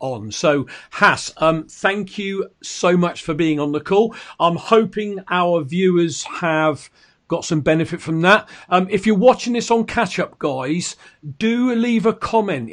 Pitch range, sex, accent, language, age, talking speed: 175-210 Hz, male, British, English, 50-69, 170 wpm